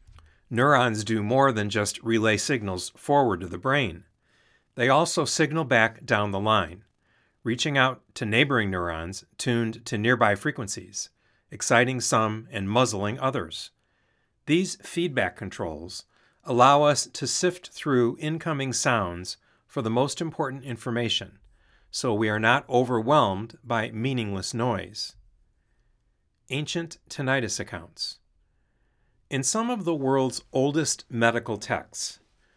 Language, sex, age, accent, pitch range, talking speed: English, male, 40-59, American, 105-140 Hz, 120 wpm